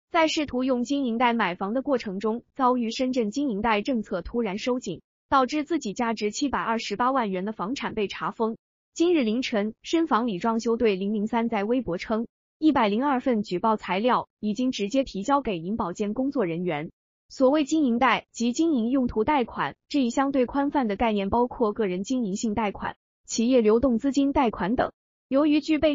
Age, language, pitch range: 20-39, Chinese, 210-265 Hz